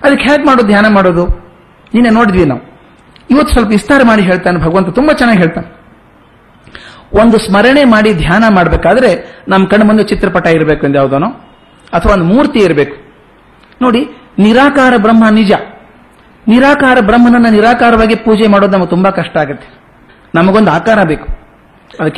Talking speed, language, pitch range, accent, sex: 135 wpm, Kannada, 180-235 Hz, native, male